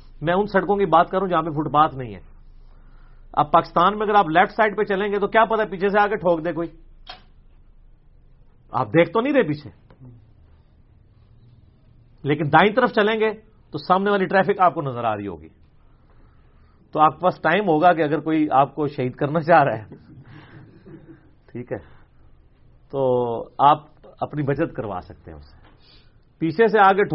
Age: 40-59